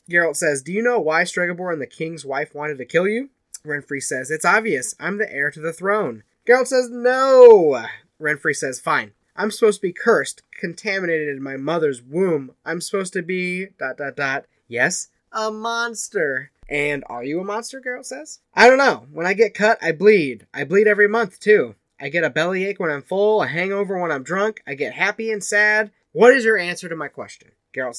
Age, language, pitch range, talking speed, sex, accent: 20-39, English, 150-210 Hz, 210 wpm, male, American